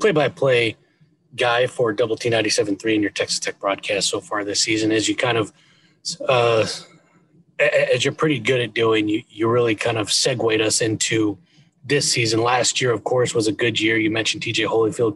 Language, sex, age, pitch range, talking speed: English, male, 30-49, 115-155 Hz, 200 wpm